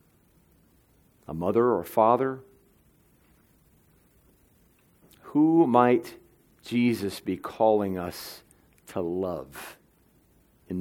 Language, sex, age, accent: English, male, 40-59, American